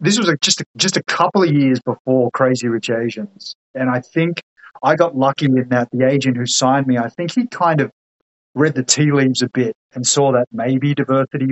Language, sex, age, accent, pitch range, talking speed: English, male, 30-49, Australian, 120-140 Hz, 215 wpm